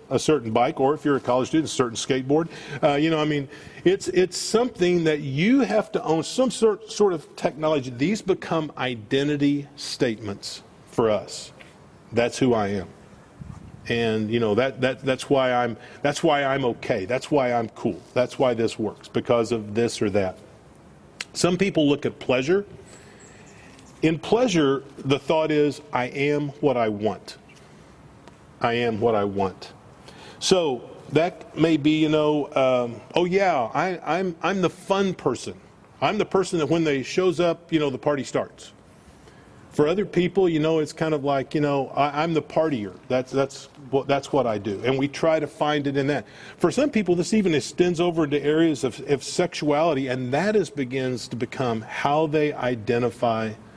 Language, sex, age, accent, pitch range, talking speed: English, male, 40-59, American, 125-160 Hz, 185 wpm